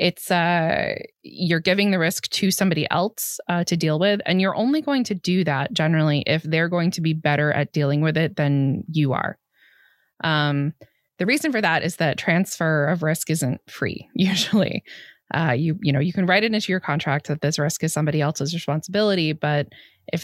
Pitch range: 155-195 Hz